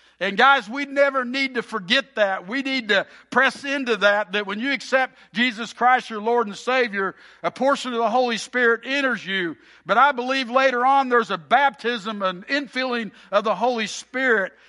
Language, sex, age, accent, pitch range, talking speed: English, male, 60-79, American, 195-255 Hz, 190 wpm